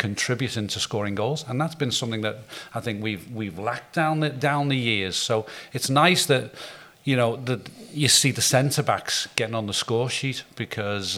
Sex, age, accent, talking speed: male, 40-59, British, 195 wpm